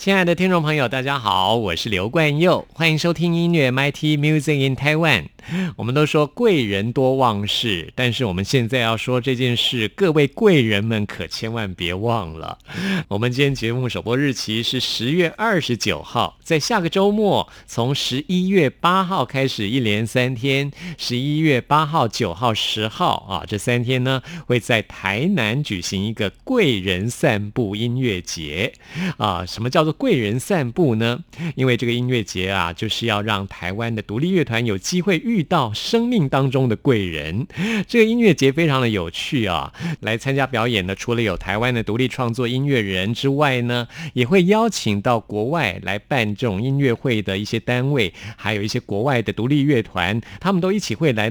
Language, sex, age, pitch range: Chinese, male, 50-69, 110-150 Hz